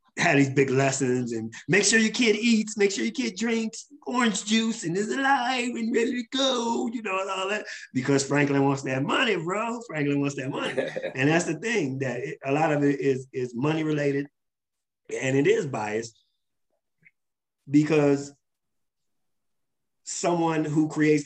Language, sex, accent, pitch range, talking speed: English, male, American, 125-155 Hz, 170 wpm